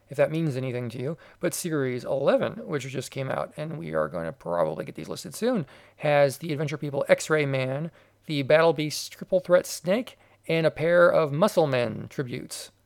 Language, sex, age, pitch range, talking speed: English, male, 40-59, 135-175 Hz, 195 wpm